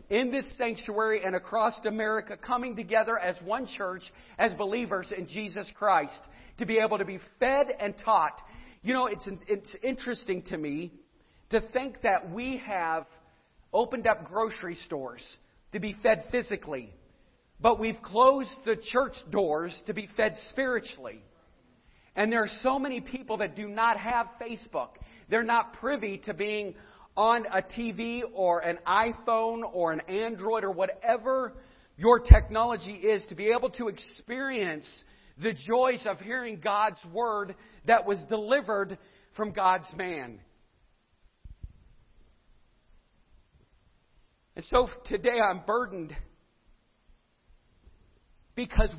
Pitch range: 190-230 Hz